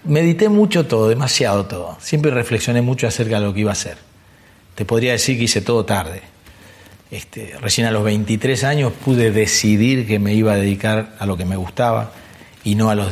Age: 40-59